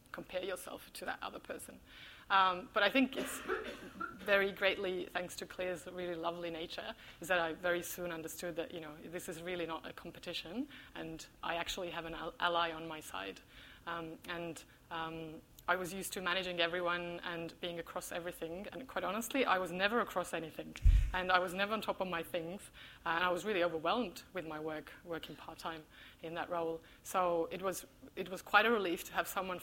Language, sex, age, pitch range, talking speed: English, female, 20-39, 170-215 Hz, 200 wpm